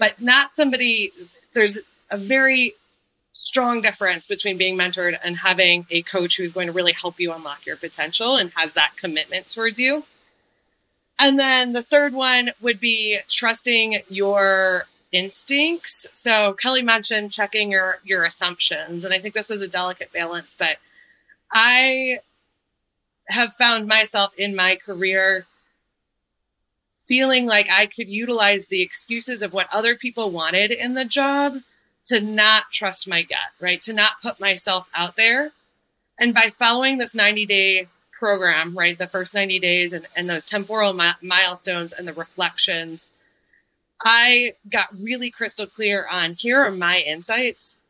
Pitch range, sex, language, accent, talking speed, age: 180-235 Hz, female, English, American, 150 wpm, 20-39